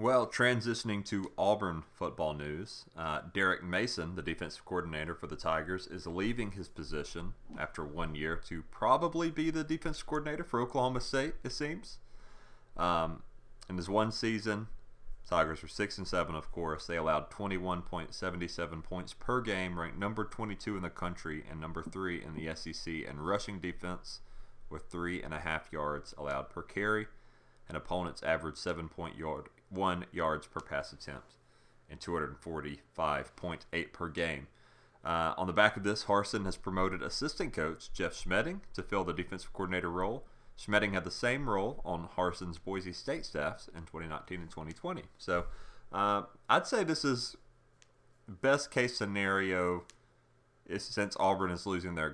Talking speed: 155 wpm